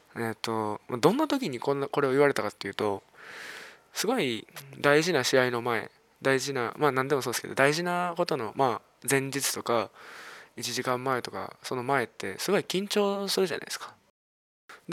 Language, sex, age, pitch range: Japanese, male, 20-39, 130-175 Hz